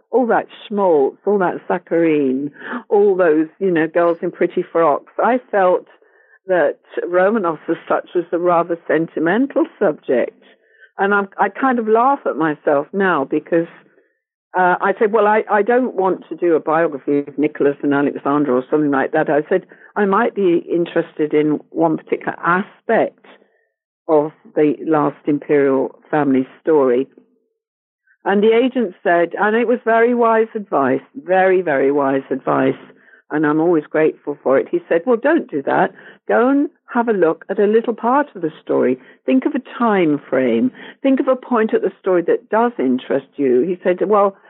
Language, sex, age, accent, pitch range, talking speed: English, female, 50-69, British, 155-240 Hz, 170 wpm